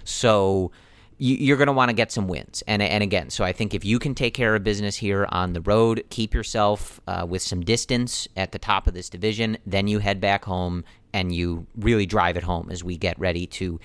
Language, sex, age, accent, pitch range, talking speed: English, male, 40-59, American, 90-110 Hz, 235 wpm